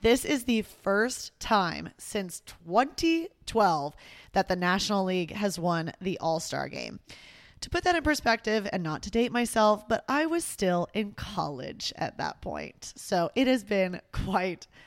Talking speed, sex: 160 wpm, female